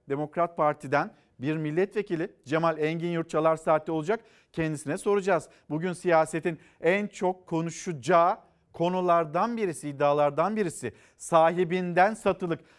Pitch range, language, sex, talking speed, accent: 160-210 Hz, Turkish, male, 105 wpm, native